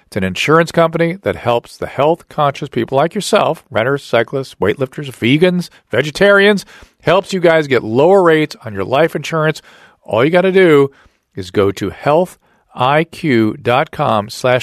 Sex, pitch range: male, 115-160 Hz